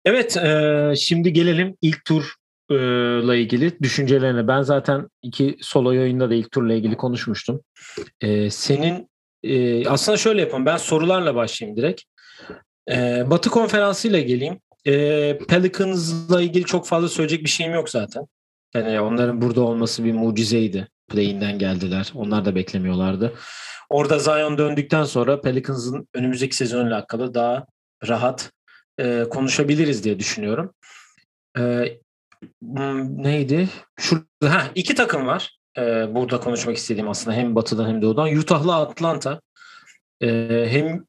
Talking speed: 125 wpm